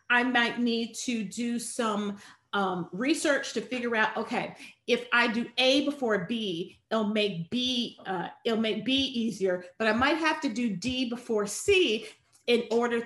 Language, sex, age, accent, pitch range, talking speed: English, female, 40-59, American, 205-265 Hz, 170 wpm